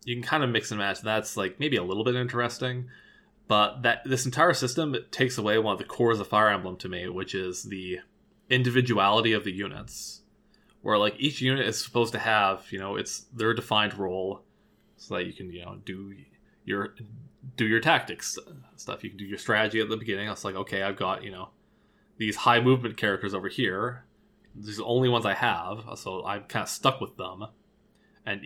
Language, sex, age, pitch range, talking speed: English, male, 20-39, 100-120 Hz, 210 wpm